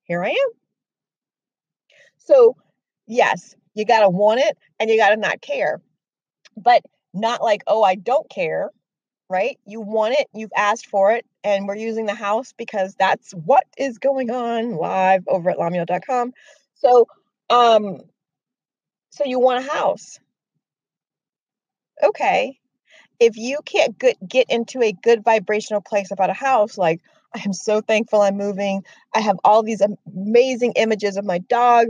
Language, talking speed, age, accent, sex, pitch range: English, 150 wpm, 30-49, American, female, 200-255 Hz